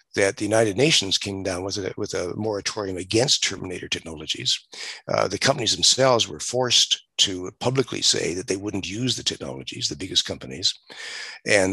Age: 60-79